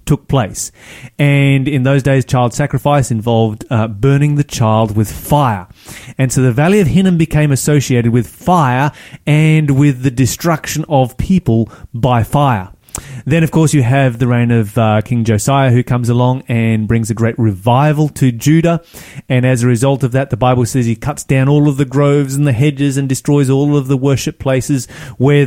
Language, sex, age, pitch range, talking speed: English, male, 30-49, 120-150 Hz, 190 wpm